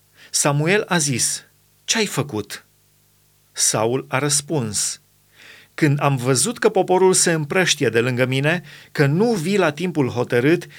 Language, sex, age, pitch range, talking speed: Romanian, male, 30-49, 130-170 Hz, 135 wpm